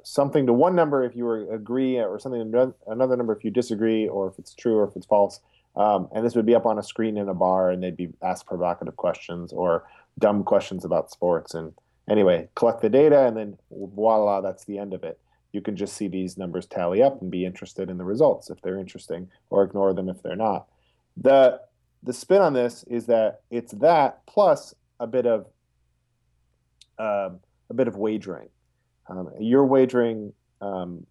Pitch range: 95-125 Hz